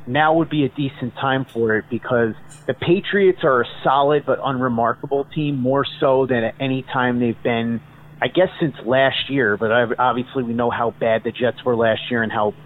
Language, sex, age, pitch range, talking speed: English, male, 30-49, 120-155 Hz, 205 wpm